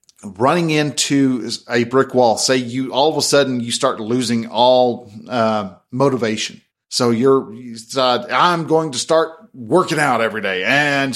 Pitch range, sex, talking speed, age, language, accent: 125-185 Hz, male, 155 wpm, 40-59, English, American